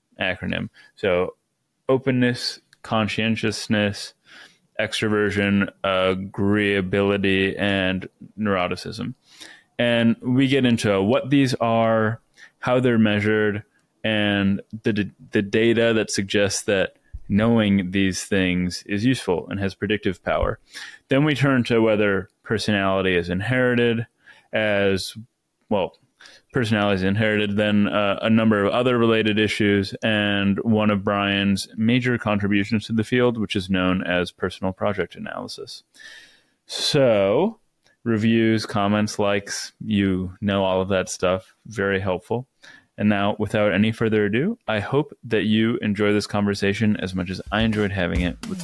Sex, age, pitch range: male, 20-39, 100-115 Hz